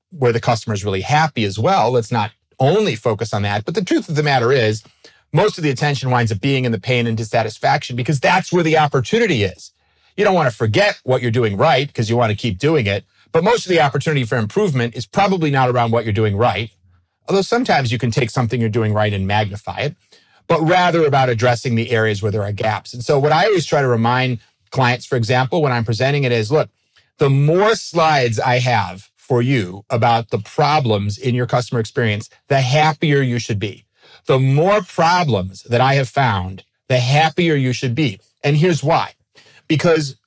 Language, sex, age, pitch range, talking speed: English, male, 40-59, 115-155 Hz, 215 wpm